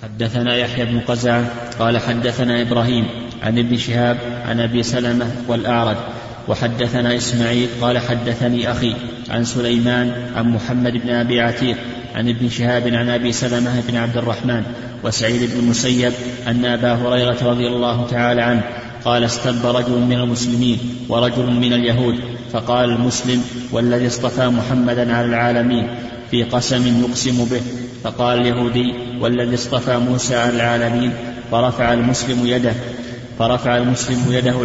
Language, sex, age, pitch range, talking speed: Arabic, male, 30-49, 120-125 Hz, 130 wpm